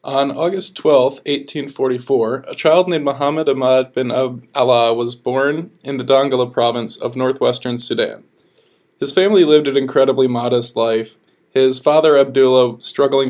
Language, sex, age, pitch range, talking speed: English, male, 20-39, 125-145 Hz, 140 wpm